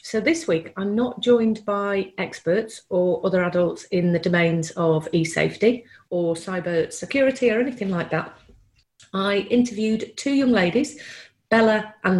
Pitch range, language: 185-225 Hz, English